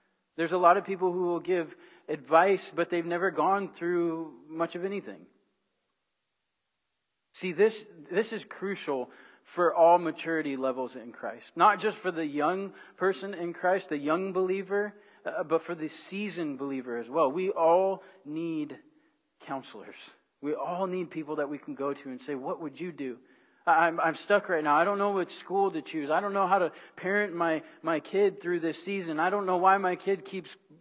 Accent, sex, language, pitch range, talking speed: American, male, English, 155-195 Hz, 185 wpm